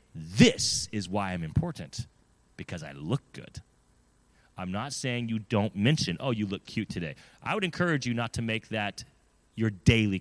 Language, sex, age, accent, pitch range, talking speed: English, male, 30-49, American, 105-130 Hz, 175 wpm